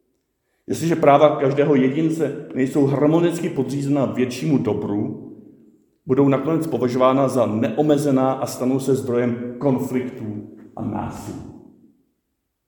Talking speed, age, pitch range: 100 wpm, 50-69, 115-145 Hz